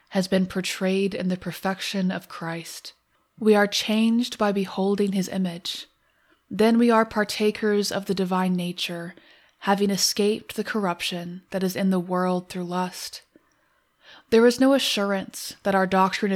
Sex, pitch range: female, 180-210 Hz